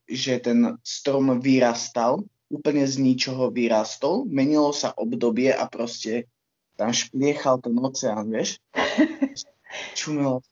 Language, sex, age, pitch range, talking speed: Slovak, male, 20-39, 120-155 Hz, 110 wpm